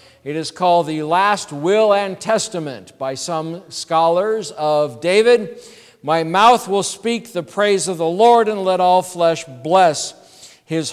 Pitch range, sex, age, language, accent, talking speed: 135-185 Hz, male, 50-69, English, American, 155 wpm